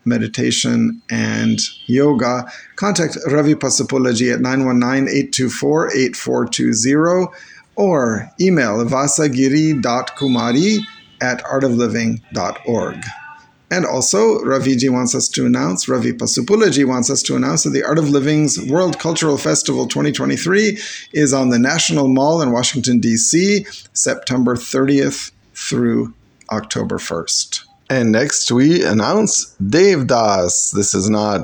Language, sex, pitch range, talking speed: English, male, 110-145 Hz, 110 wpm